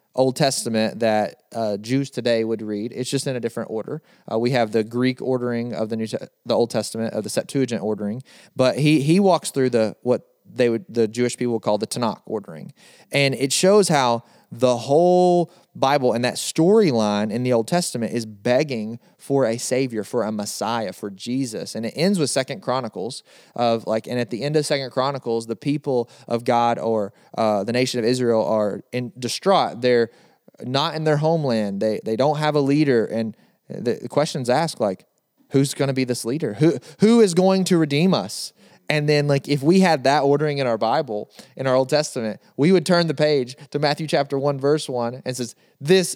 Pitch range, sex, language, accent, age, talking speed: 115-155 Hz, male, English, American, 30-49, 205 wpm